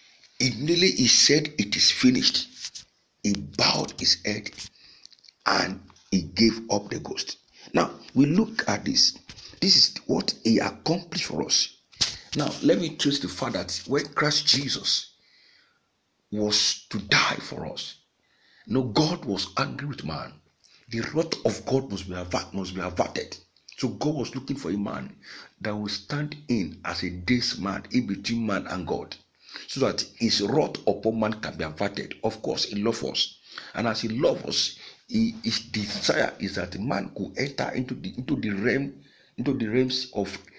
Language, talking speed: English, 175 wpm